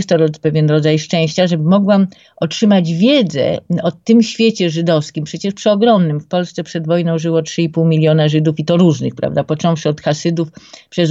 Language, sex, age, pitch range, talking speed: Polish, female, 50-69, 160-185 Hz, 165 wpm